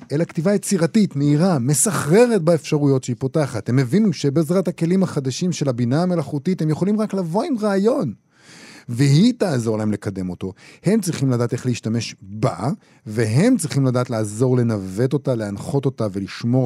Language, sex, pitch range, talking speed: Hebrew, male, 120-165 Hz, 150 wpm